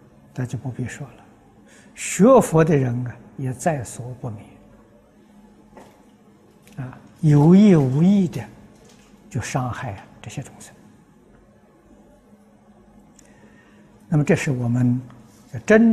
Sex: male